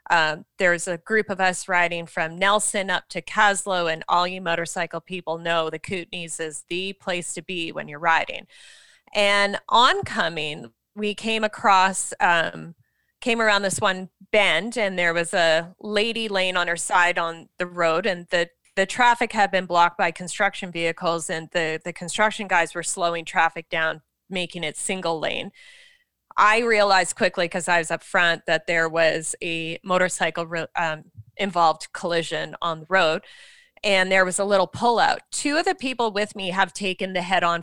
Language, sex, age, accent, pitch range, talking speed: English, female, 20-39, American, 165-200 Hz, 175 wpm